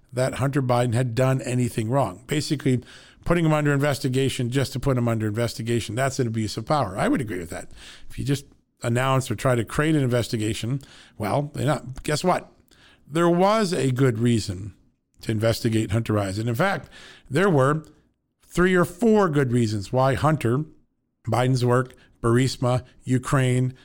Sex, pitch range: male, 120-145 Hz